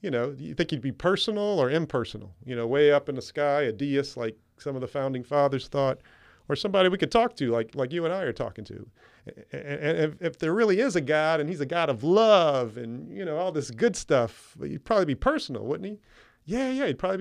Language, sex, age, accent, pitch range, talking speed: English, male, 40-59, American, 120-160 Hz, 245 wpm